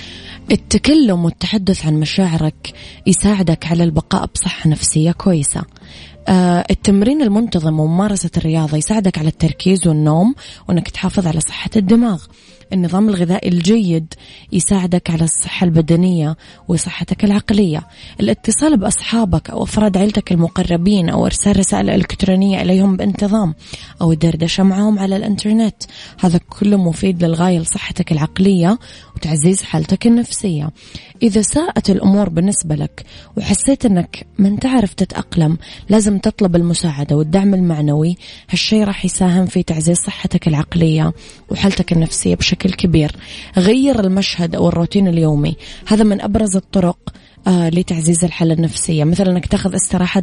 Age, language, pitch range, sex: 20-39, Arabic, 165-205 Hz, female